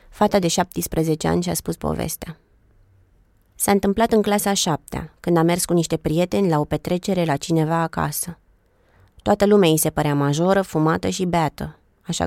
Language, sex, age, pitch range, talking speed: Romanian, female, 20-39, 150-180 Hz, 170 wpm